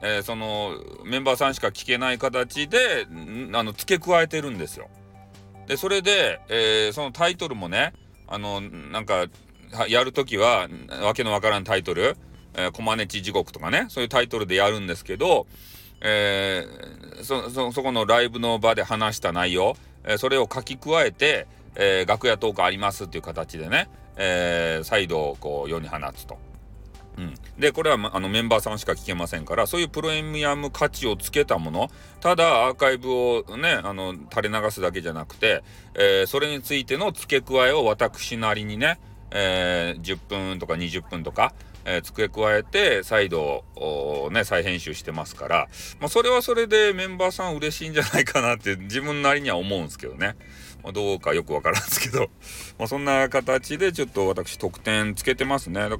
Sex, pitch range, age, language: male, 100-150 Hz, 40-59, Japanese